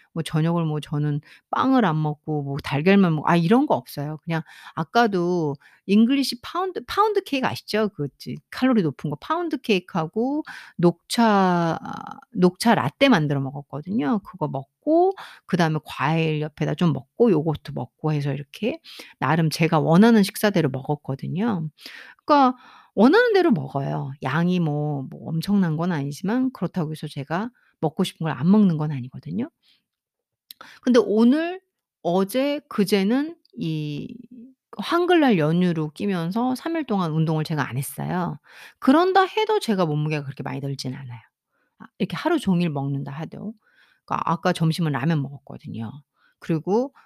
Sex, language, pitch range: female, Korean, 150-235 Hz